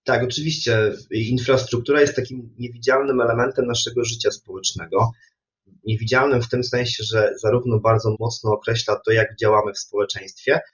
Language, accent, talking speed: Polish, native, 135 wpm